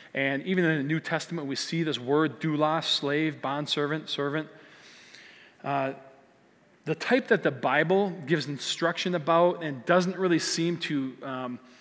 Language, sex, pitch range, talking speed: English, male, 135-170 Hz, 150 wpm